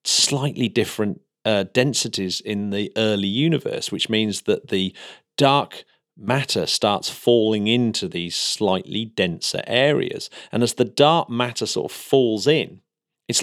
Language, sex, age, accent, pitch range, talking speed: English, male, 40-59, British, 100-130 Hz, 140 wpm